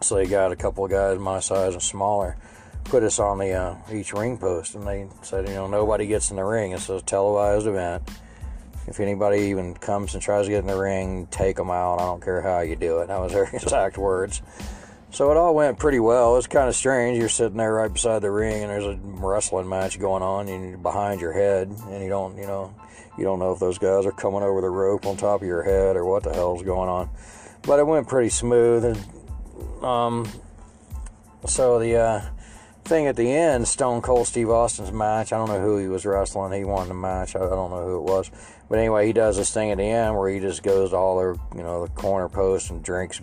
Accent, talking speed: American, 240 wpm